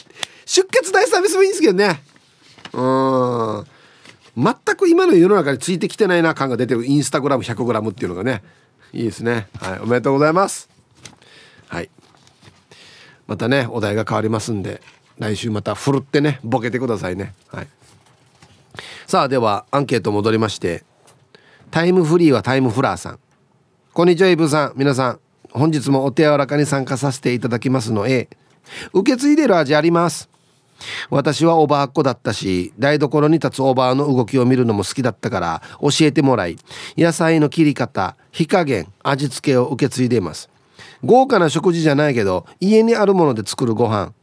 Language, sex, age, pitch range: Japanese, male, 40-59, 120-165 Hz